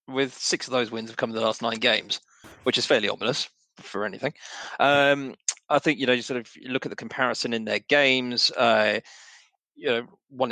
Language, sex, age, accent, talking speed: English, male, 30-49, British, 210 wpm